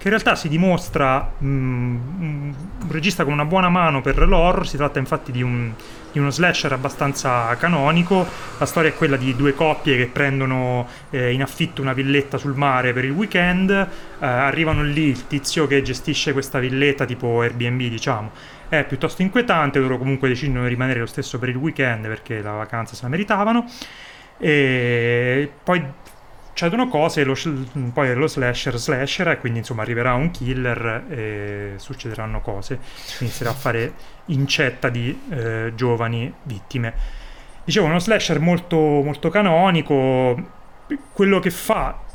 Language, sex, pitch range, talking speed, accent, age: Italian, male, 125-160 Hz, 160 wpm, native, 30-49